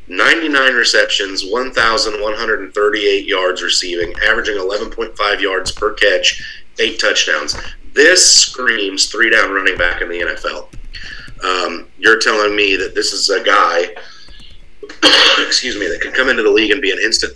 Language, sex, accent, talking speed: English, male, American, 140 wpm